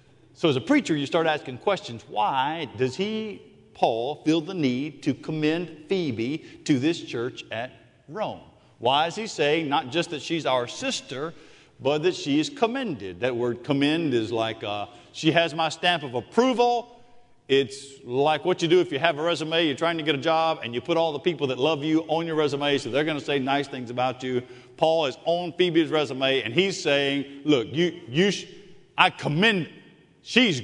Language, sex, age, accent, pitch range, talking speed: English, male, 50-69, American, 140-215 Hz, 200 wpm